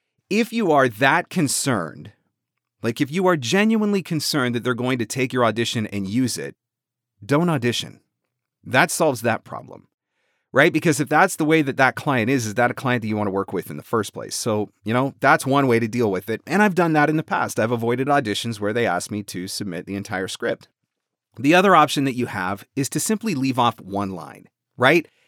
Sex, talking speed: male, 225 wpm